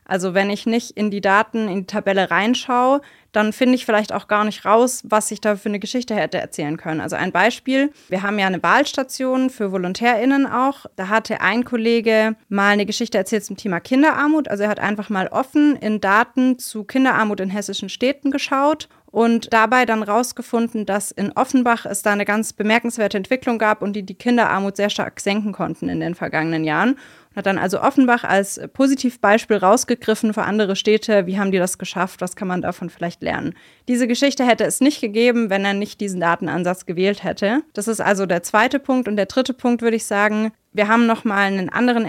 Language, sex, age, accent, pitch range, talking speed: German, female, 30-49, German, 195-245 Hz, 205 wpm